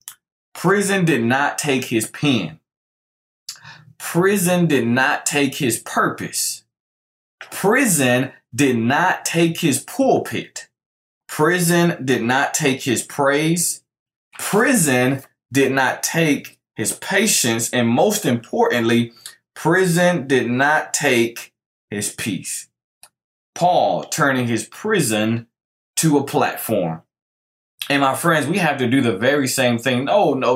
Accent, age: American, 20-39